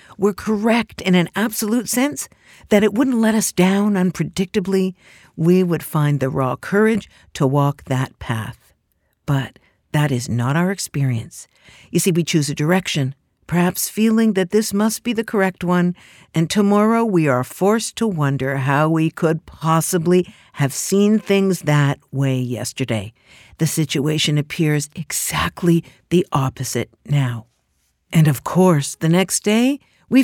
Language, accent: English, American